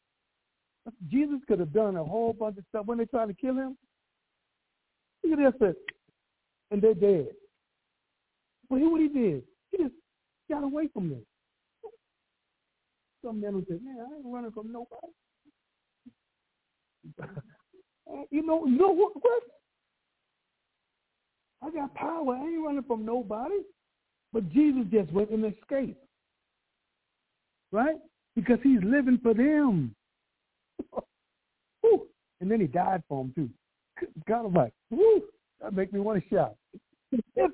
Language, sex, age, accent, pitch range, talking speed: English, male, 60-79, American, 200-280 Hz, 140 wpm